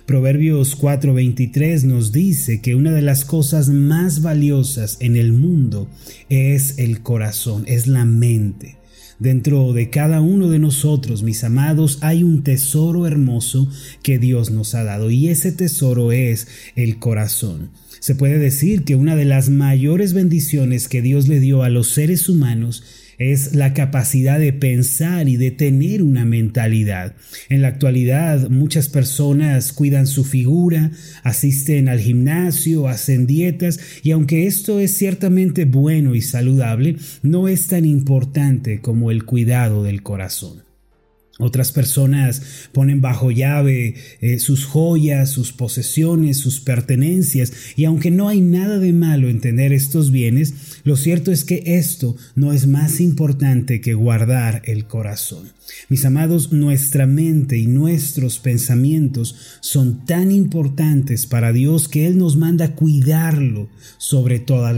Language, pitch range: Spanish, 125-155 Hz